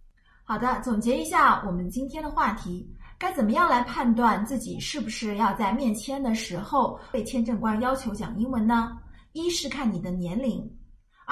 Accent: native